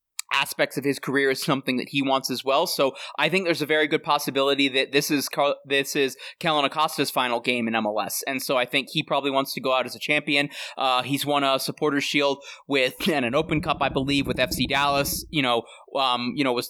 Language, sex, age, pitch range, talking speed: English, male, 20-39, 130-145 Hz, 235 wpm